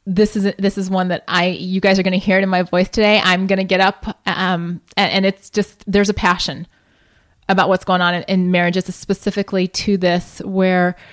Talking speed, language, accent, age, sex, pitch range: 225 wpm, English, American, 30-49, female, 185-225 Hz